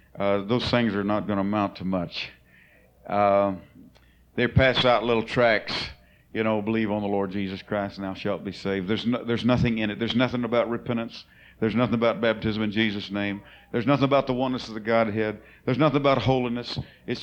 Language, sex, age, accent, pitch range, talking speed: English, male, 50-69, American, 100-130 Hz, 205 wpm